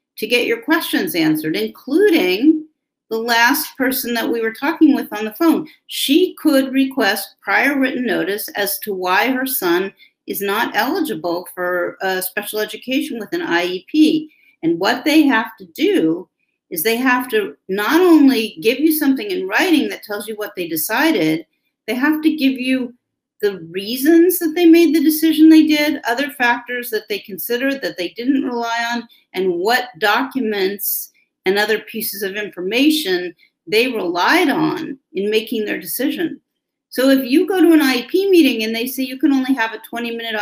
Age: 50-69